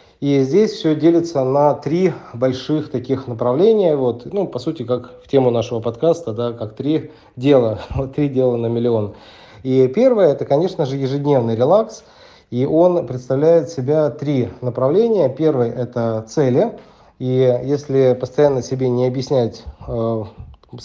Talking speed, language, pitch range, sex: 145 wpm, Russian, 120-150 Hz, male